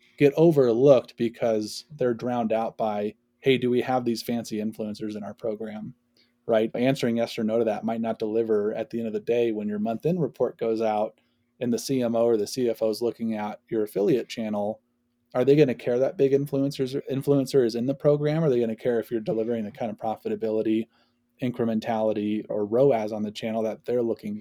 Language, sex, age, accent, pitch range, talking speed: English, male, 20-39, American, 110-125 Hz, 210 wpm